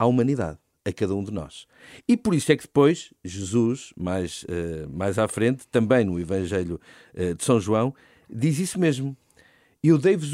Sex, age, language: male, 50-69, Portuguese